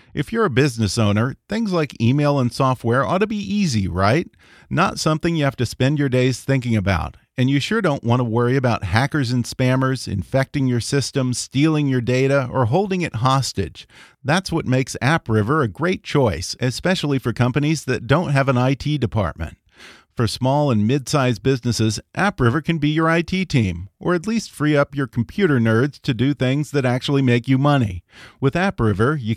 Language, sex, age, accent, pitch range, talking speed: English, male, 40-59, American, 120-155 Hz, 190 wpm